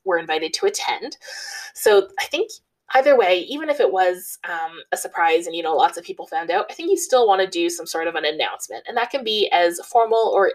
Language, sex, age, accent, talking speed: English, female, 20-39, American, 245 wpm